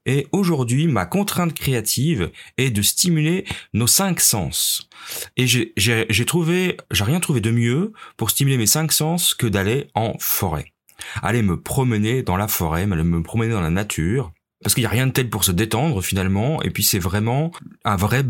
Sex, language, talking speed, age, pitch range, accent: male, French, 195 wpm, 30-49, 100-145 Hz, French